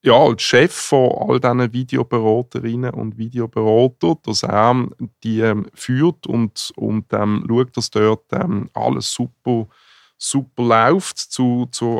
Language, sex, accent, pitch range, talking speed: German, male, Austrian, 110-135 Hz, 130 wpm